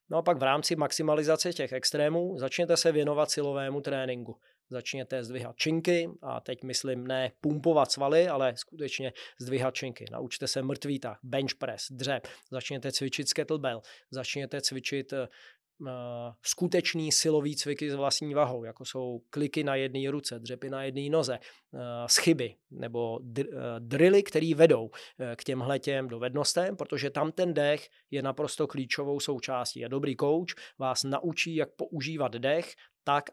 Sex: male